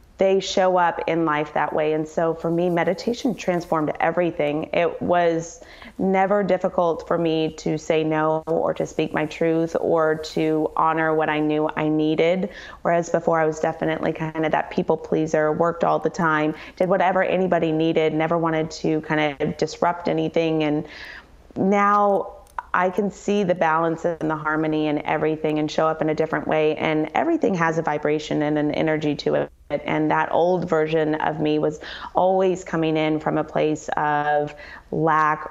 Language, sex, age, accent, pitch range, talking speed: English, female, 20-39, American, 155-170 Hz, 175 wpm